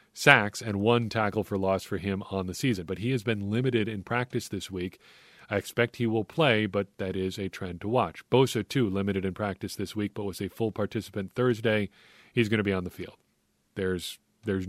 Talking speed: 220 wpm